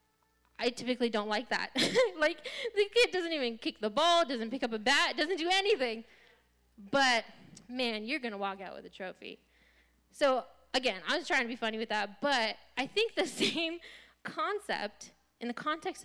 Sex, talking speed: female, 185 wpm